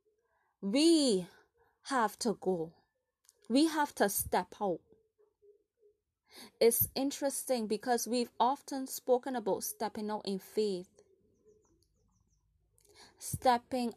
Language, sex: English, female